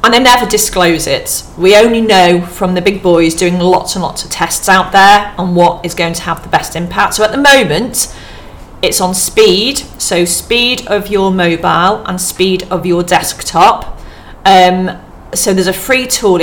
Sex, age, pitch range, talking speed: female, 40-59, 170-195 Hz, 190 wpm